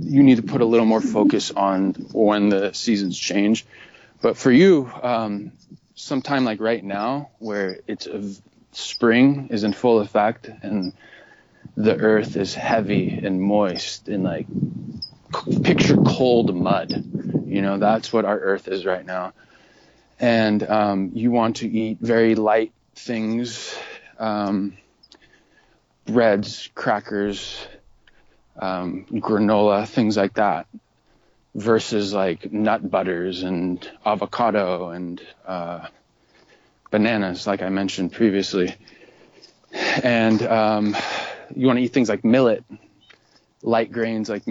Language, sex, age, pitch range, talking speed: English, male, 20-39, 100-115 Hz, 125 wpm